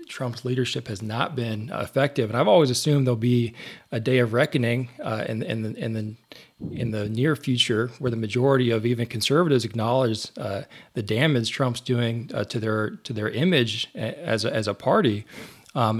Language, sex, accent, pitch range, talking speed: English, male, American, 115-140 Hz, 190 wpm